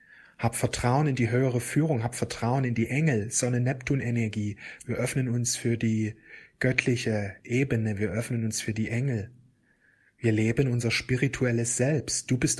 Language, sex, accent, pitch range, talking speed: German, male, German, 115-135 Hz, 150 wpm